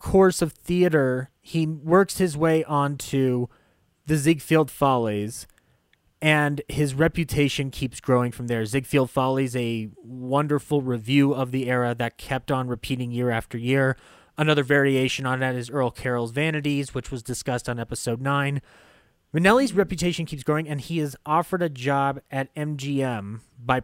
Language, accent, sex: English, American, male